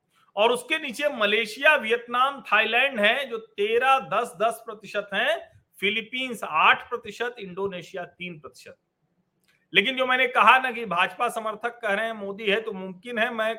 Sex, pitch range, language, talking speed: male, 170-235 Hz, Hindi, 160 wpm